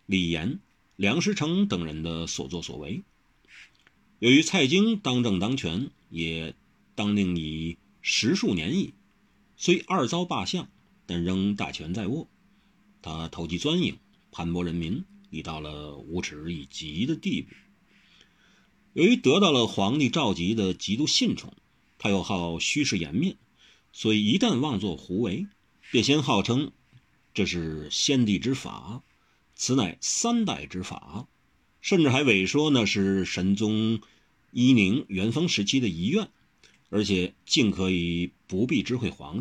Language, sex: Chinese, male